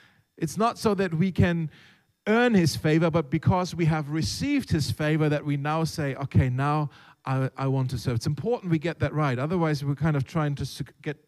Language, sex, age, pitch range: German, male, 40-59, 135-190 Hz